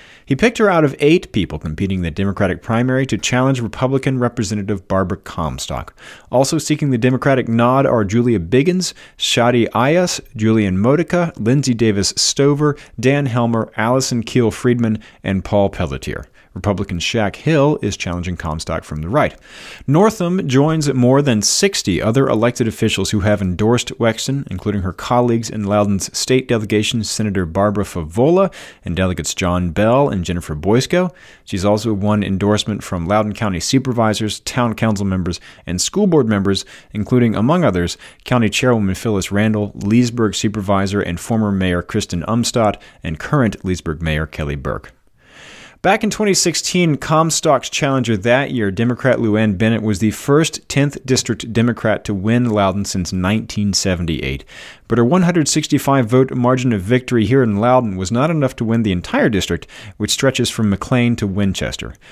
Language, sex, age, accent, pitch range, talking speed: English, male, 30-49, American, 100-130 Hz, 155 wpm